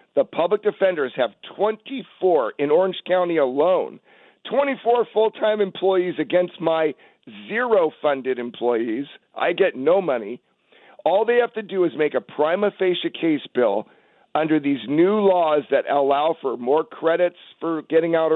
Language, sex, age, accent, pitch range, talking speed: English, male, 50-69, American, 160-220 Hz, 145 wpm